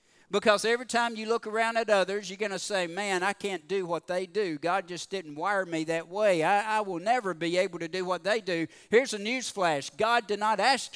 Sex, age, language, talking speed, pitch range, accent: male, 50-69, English, 240 wpm, 170-220 Hz, American